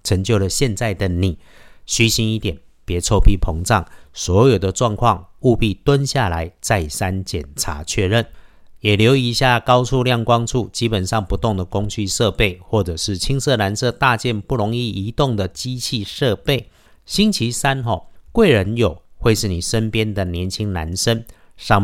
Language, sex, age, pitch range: Chinese, male, 50-69, 95-120 Hz